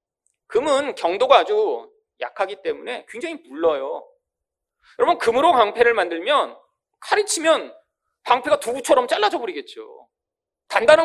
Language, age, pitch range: Korean, 40-59, 275-455 Hz